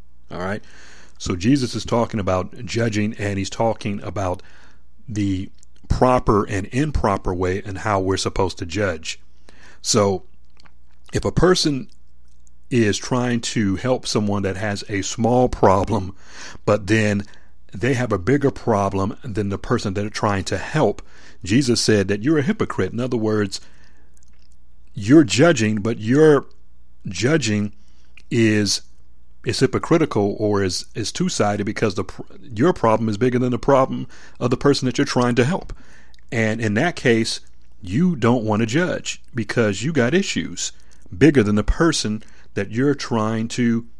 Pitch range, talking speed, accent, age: 95-120 Hz, 150 wpm, American, 40-59